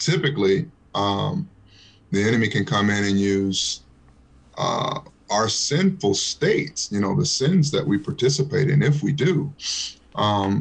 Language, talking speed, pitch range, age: English, 140 wpm, 100-125 Hz, 30-49